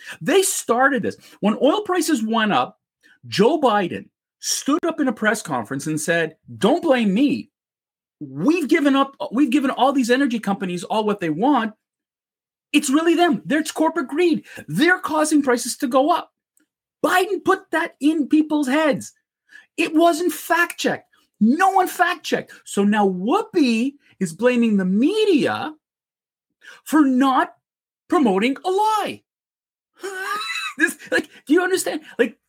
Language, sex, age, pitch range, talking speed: English, male, 40-59, 235-340 Hz, 145 wpm